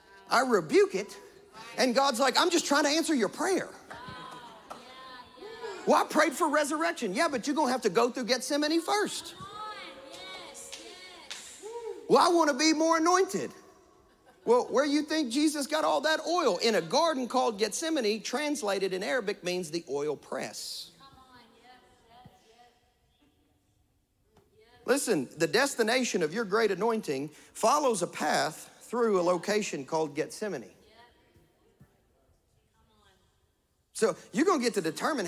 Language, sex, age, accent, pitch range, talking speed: English, male, 40-59, American, 190-320 Hz, 135 wpm